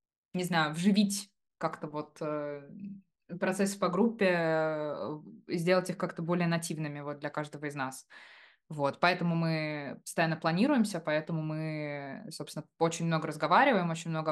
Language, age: Russian, 20-39